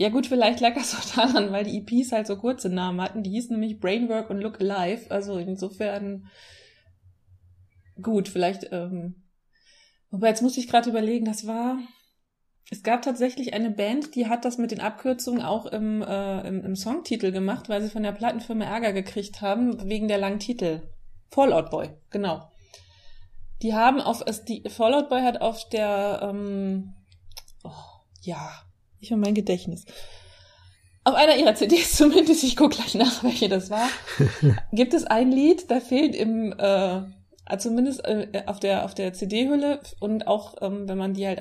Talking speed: 170 wpm